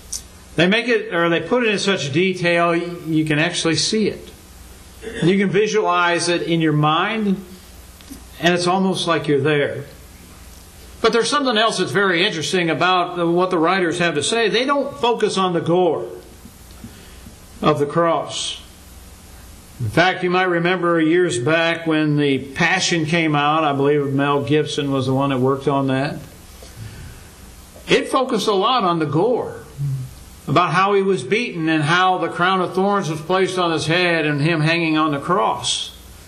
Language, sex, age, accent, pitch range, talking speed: English, male, 60-79, American, 125-190 Hz, 170 wpm